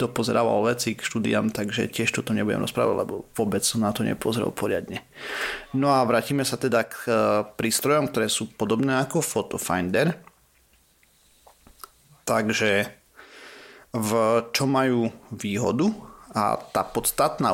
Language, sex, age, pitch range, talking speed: Slovak, male, 30-49, 105-125 Hz, 125 wpm